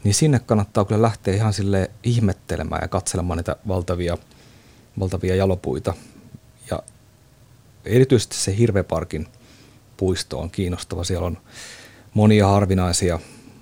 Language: Finnish